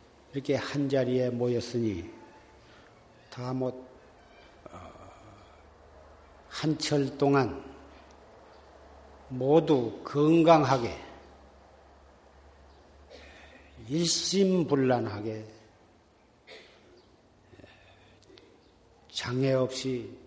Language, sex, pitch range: Korean, male, 90-130 Hz